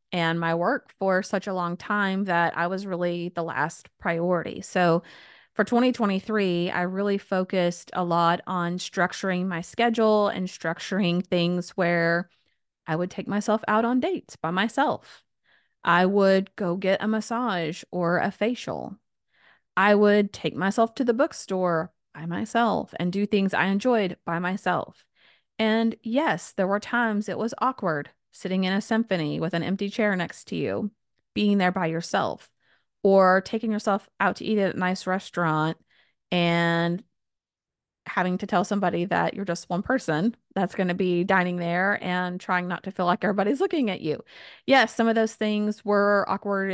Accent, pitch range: American, 175-210 Hz